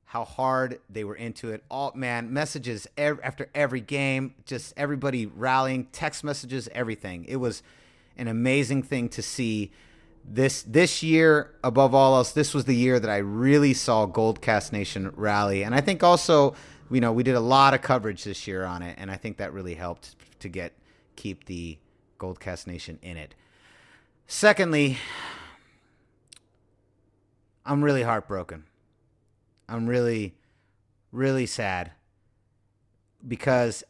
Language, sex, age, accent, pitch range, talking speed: English, male, 30-49, American, 105-140 Hz, 150 wpm